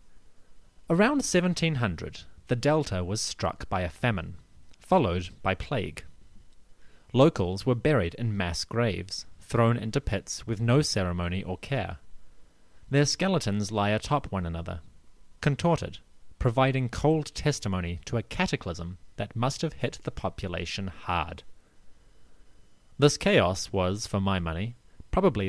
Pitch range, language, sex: 90-130 Hz, English, male